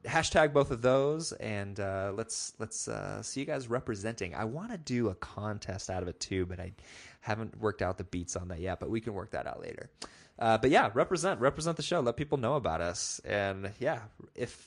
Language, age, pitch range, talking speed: English, 20-39, 105-140 Hz, 225 wpm